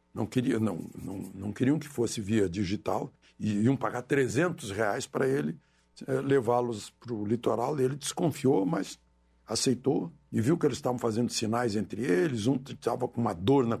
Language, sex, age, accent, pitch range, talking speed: Portuguese, male, 60-79, Brazilian, 120-170 Hz, 180 wpm